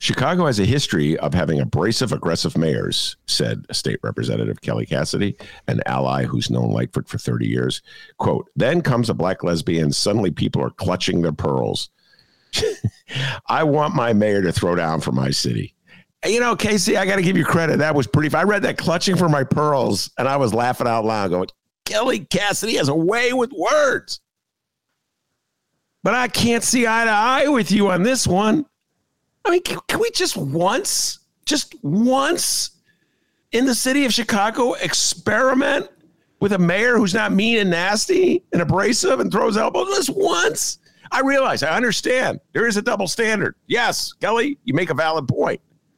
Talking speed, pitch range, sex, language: 175 wpm, 150-255 Hz, male, English